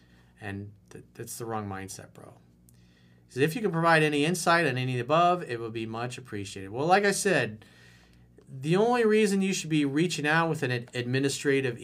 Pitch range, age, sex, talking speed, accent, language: 105-150 Hz, 40-59, male, 195 wpm, American, English